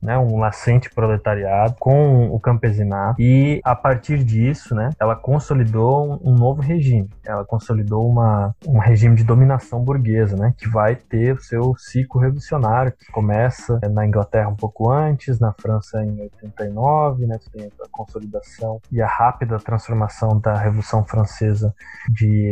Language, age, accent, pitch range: Portuguese, 20-39, Brazilian, 105-125 Hz